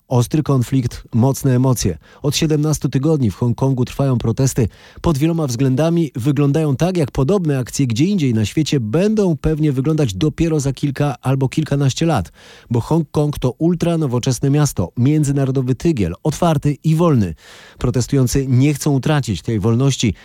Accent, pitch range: native, 120-155 Hz